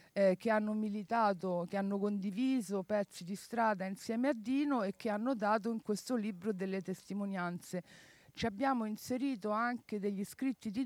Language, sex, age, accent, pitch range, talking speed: Italian, female, 50-69, native, 195-225 Hz, 155 wpm